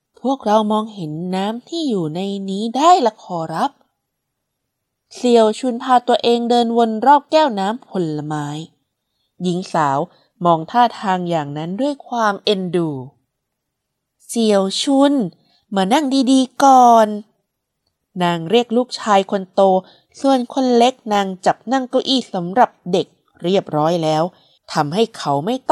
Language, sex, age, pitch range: Thai, female, 20-39, 175-265 Hz